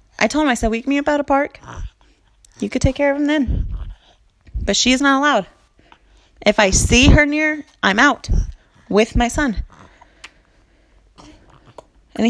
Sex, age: female, 20-39